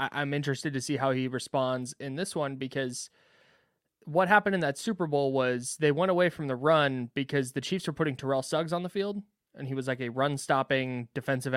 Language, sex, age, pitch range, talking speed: English, male, 20-39, 130-150 Hz, 220 wpm